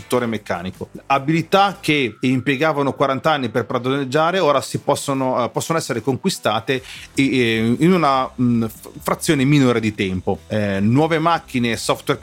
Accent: native